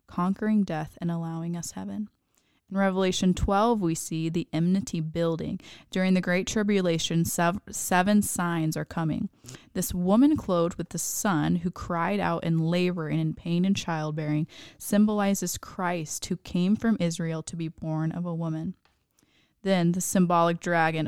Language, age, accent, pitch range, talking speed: English, 20-39, American, 160-190 Hz, 155 wpm